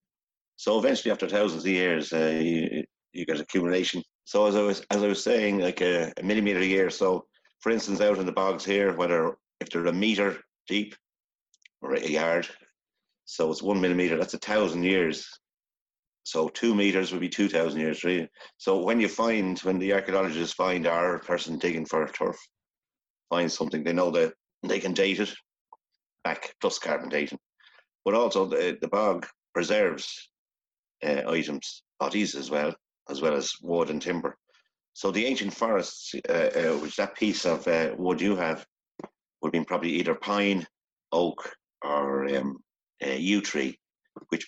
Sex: male